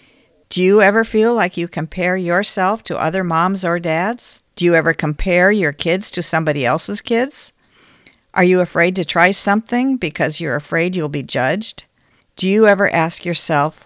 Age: 50-69